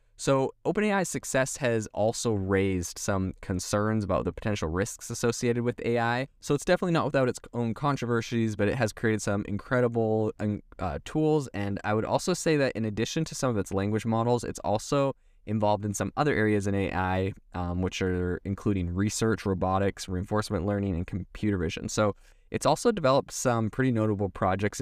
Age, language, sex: 20-39, English, male